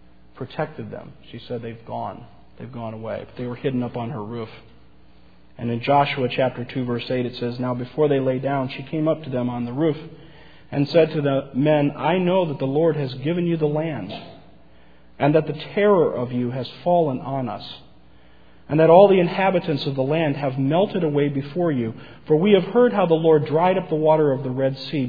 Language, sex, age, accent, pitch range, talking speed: English, male, 40-59, American, 120-160 Hz, 220 wpm